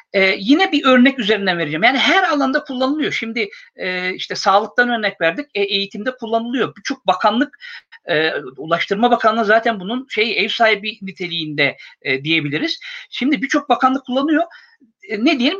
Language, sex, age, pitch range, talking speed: Turkish, male, 50-69, 175-250 Hz, 150 wpm